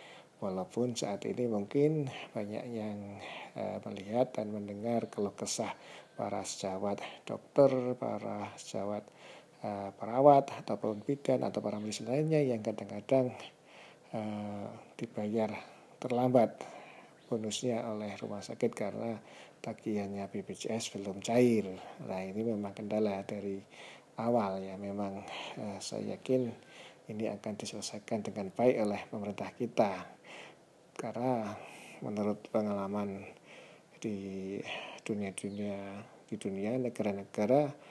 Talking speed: 105 wpm